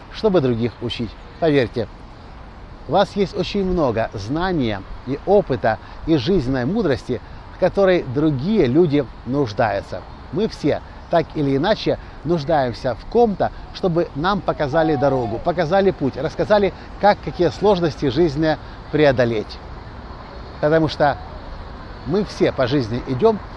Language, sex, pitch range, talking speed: Russian, male, 120-180 Hz, 120 wpm